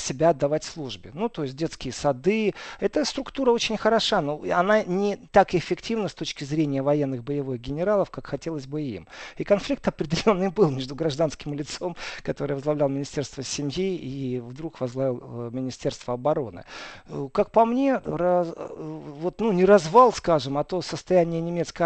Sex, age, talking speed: male, 40-59, 150 wpm